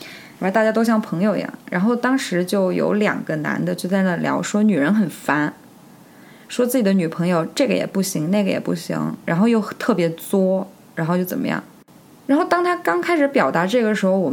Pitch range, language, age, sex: 185-275 Hz, Chinese, 20-39, female